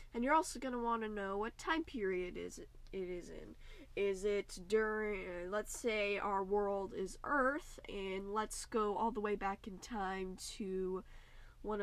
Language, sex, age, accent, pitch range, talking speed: English, female, 10-29, American, 195-230 Hz, 180 wpm